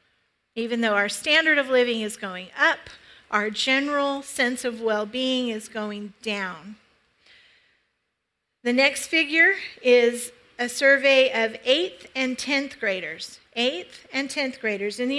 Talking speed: 135 wpm